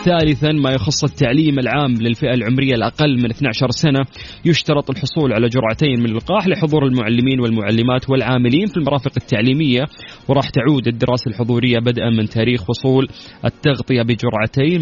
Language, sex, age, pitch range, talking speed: English, male, 30-49, 120-150 Hz, 140 wpm